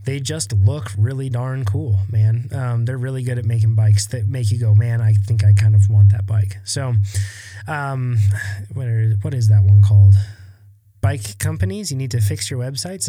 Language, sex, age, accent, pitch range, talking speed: English, male, 20-39, American, 105-135 Hz, 195 wpm